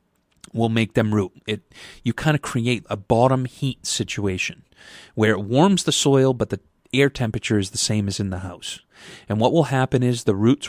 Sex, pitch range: male, 100-125 Hz